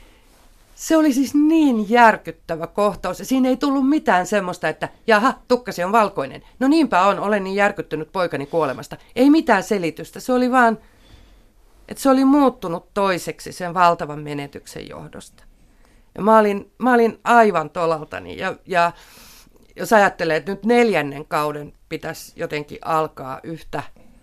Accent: native